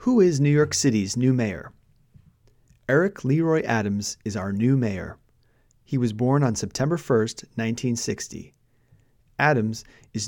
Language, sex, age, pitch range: Japanese, male, 30-49, 110-140 Hz